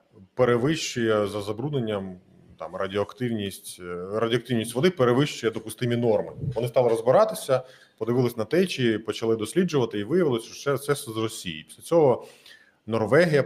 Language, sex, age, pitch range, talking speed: Ukrainian, male, 20-39, 105-130 Hz, 125 wpm